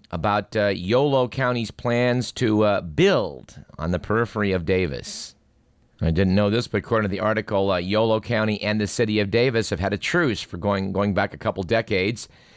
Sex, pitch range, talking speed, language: male, 95-120 Hz, 195 wpm, English